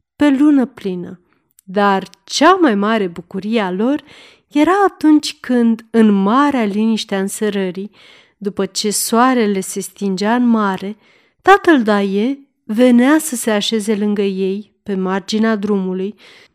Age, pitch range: 30-49, 195-240 Hz